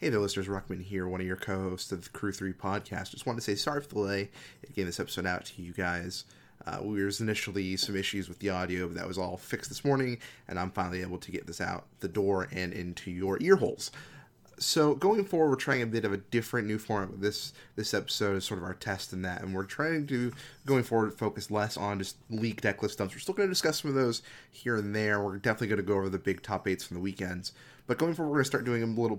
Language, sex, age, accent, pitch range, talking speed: English, male, 30-49, American, 95-115 Hz, 270 wpm